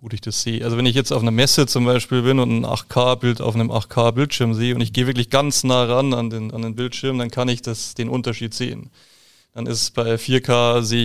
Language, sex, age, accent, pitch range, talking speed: German, male, 30-49, German, 115-130 Hz, 240 wpm